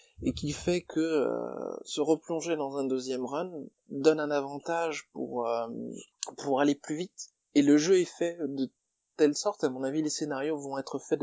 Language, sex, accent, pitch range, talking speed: French, male, French, 130-160 Hz, 195 wpm